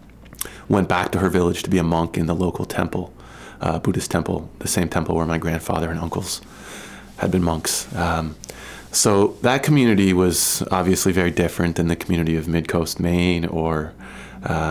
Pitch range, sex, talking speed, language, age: 80-90 Hz, male, 175 wpm, English, 30-49